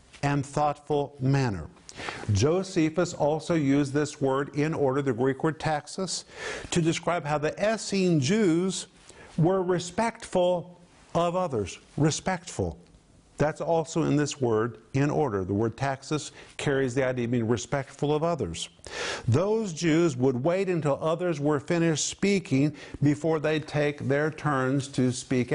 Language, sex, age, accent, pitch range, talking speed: English, male, 50-69, American, 130-170 Hz, 140 wpm